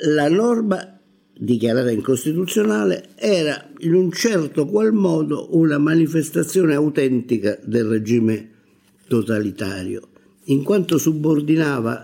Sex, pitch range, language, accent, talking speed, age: male, 120-170 Hz, Italian, native, 95 wpm, 50-69